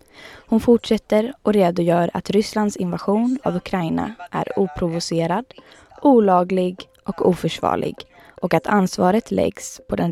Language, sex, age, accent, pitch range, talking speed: English, female, 20-39, Swedish, 180-230 Hz, 120 wpm